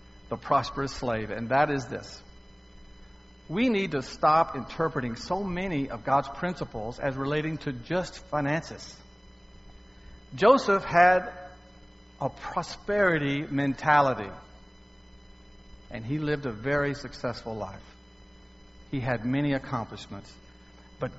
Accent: American